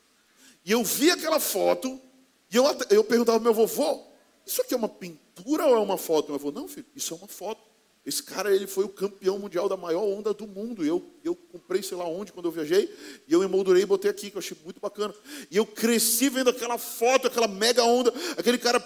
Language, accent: Portuguese, Brazilian